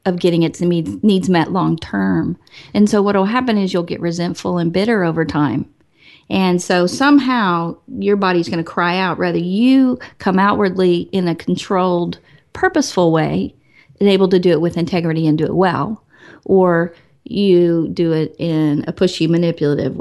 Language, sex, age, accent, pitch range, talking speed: English, female, 40-59, American, 165-195 Hz, 170 wpm